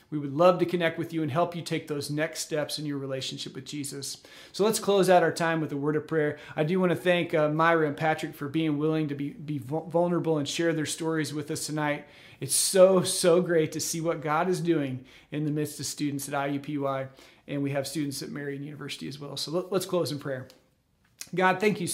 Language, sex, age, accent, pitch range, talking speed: English, male, 40-59, American, 145-170 Hz, 240 wpm